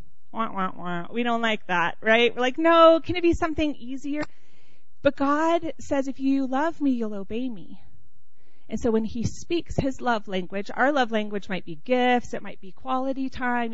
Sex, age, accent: female, 30-49, American